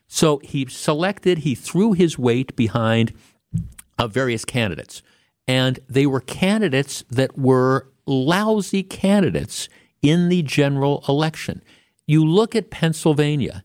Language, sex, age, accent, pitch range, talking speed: English, male, 50-69, American, 120-155 Hz, 125 wpm